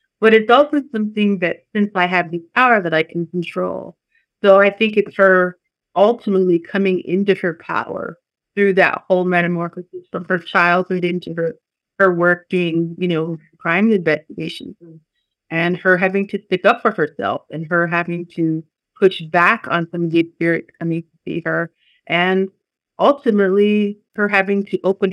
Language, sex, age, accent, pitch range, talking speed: English, female, 30-49, American, 170-190 Hz, 165 wpm